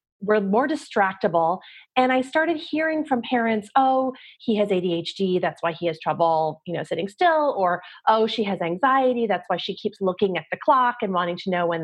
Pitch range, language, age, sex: 185-255 Hz, English, 30-49, female